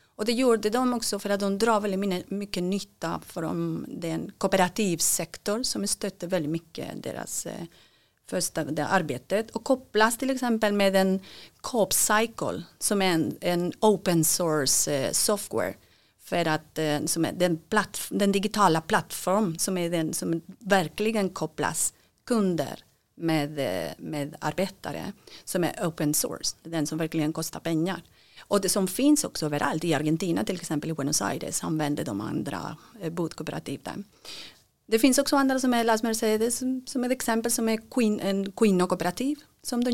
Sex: female